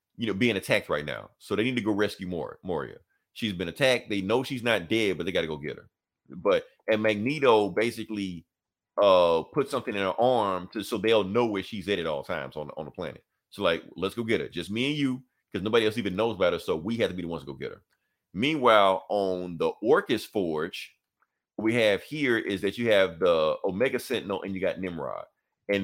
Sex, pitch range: male, 100-125 Hz